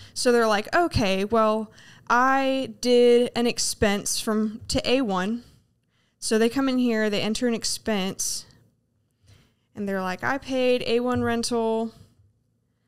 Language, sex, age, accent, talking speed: English, female, 10-29, American, 130 wpm